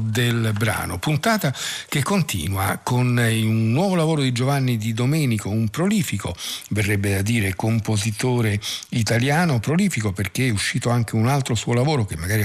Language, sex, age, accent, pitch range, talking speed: Italian, male, 50-69, native, 100-125 Hz, 150 wpm